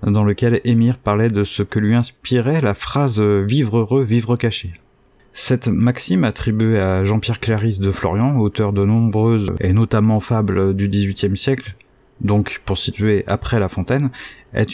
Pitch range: 105-120 Hz